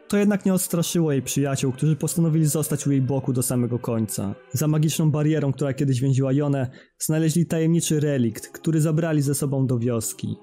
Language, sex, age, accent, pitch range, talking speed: Polish, male, 20-39, native, 130-160 Hz, 180 wpm